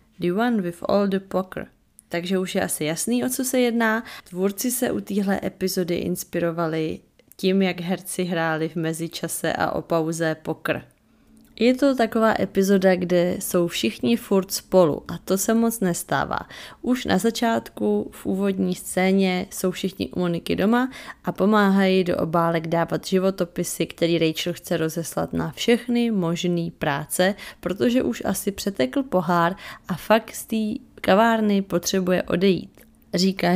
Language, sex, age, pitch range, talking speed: Czech, female, 20-39, 170-215 Hz, 150 wpm